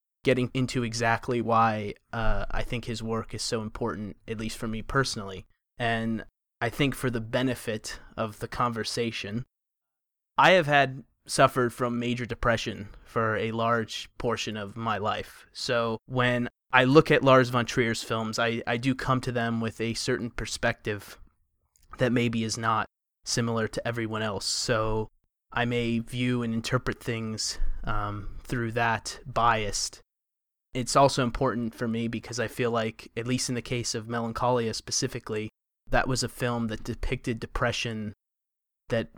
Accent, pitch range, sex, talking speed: American, 110-125 Hz, male, 160 wpm